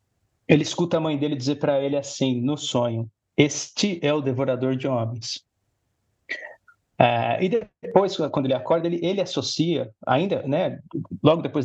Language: Portuguese